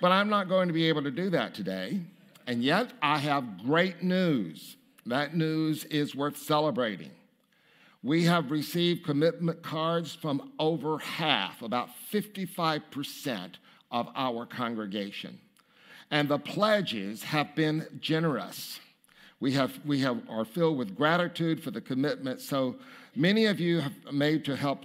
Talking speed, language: 145 wpm, English